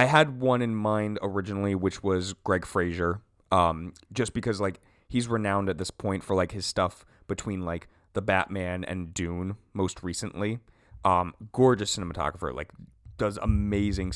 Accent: American